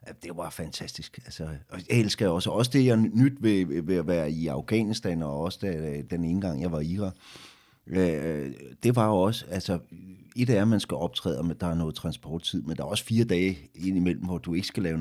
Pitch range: 90-120 Hz